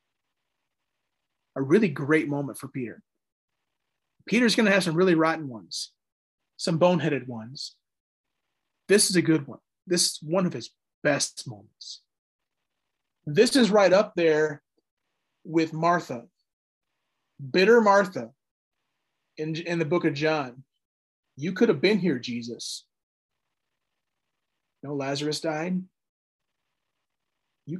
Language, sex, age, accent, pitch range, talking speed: English, male, 30-49, American, 145-185 Hz, 115 wpm